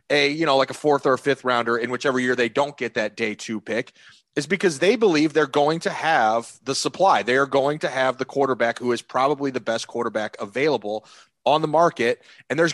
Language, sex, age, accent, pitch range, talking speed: English, male, 30-49, American, 125-155 Hz, 230 wpm